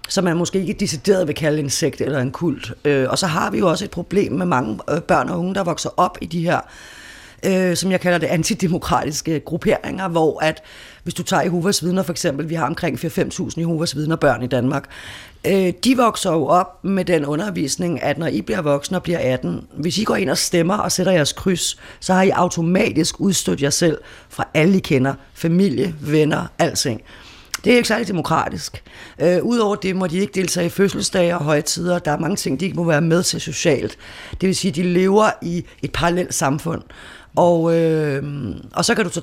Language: Danish